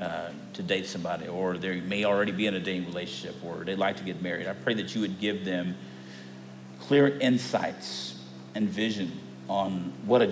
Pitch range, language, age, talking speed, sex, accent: 95-130 Hz, English, 50-69, 190 wpm, male, American